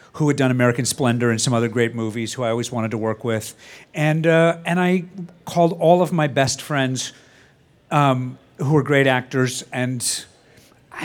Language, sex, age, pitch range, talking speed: English, male, 50-69, 135-180 Hz, 185 wpm